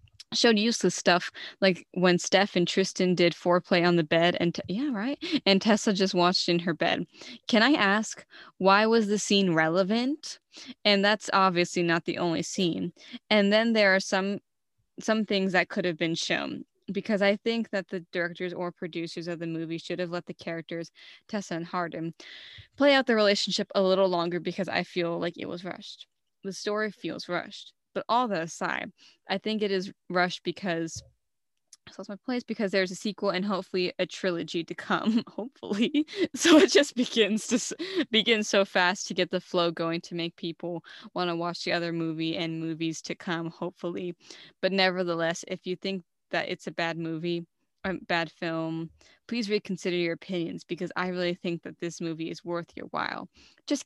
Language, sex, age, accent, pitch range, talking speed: English, female, 10-29, American, 170-215 Hz, 185 wpm